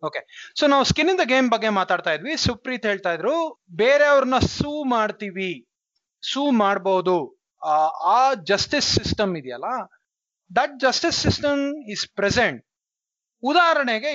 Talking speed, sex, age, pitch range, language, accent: 95 wpm, male, 30-49, 190-275 Hz, Kannada, native